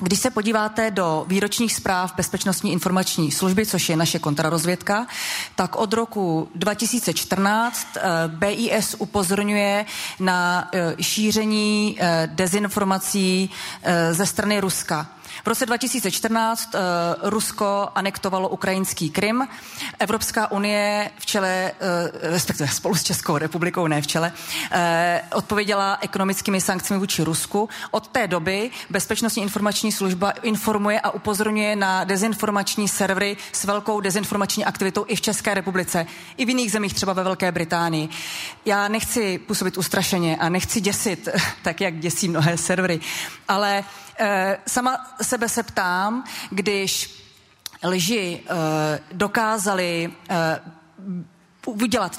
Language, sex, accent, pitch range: Czech, female, native, 175-210 Hz